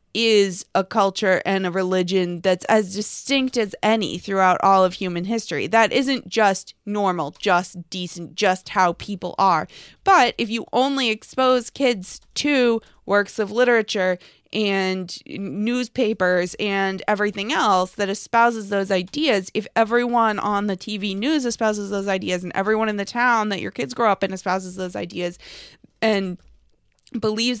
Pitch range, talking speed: 190-230 Hz, 150 wpm